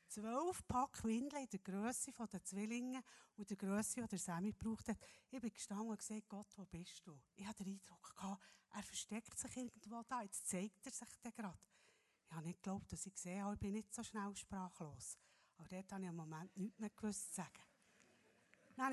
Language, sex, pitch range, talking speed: German, female, 195-240 Hz, 205 wpm